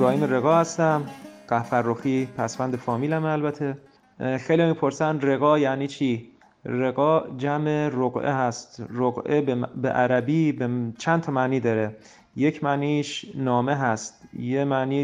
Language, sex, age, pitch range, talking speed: Persian, male, 30-49, 125-150 Hz, 130 wpm